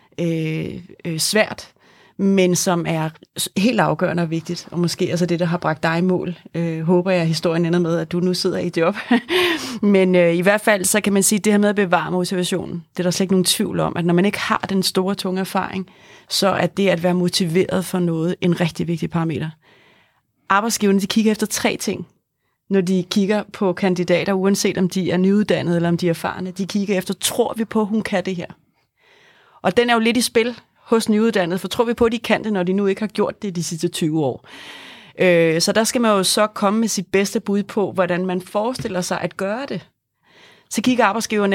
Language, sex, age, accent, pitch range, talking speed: Danish, female, 30-49, native, 175-210 Hz, 230 wpm